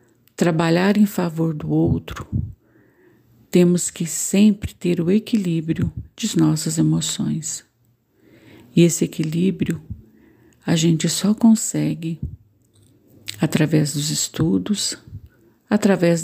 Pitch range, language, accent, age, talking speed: 145-180 Hz, Portuguese, Brazilian, 50-69, 90 wpm